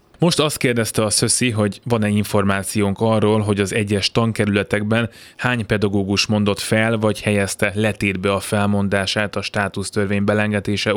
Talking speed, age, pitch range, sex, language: 135 wpm, 20-39, 105-125 Hz, male, Hungarian